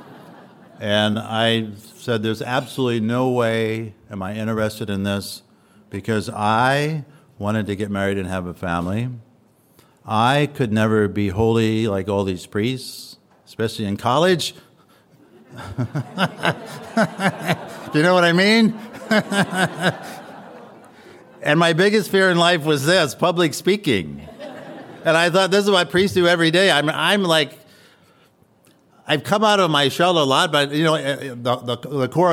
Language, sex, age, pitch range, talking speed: English, male, 60-79, 100-140 Hz, 145 wpm